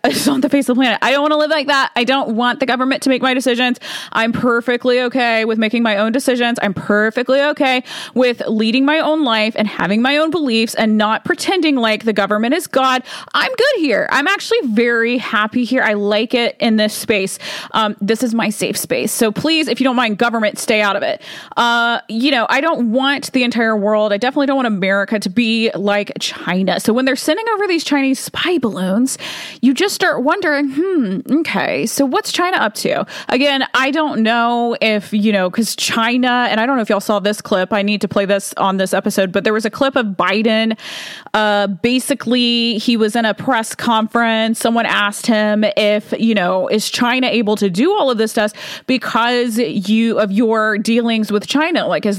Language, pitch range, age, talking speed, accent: English, 210-260 Hz, 20-39, 215 wpm, American